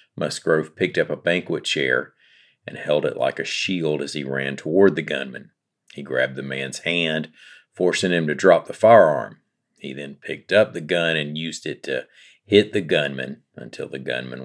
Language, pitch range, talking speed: English, 75-95 Hz, 185 wpm